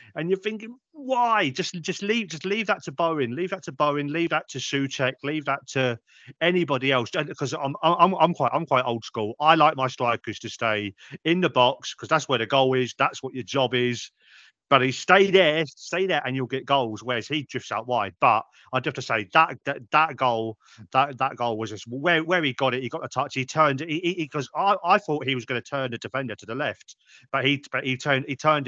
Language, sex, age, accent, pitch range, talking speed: English, male, 40-59, British, 120-150 Hz, 245 wpm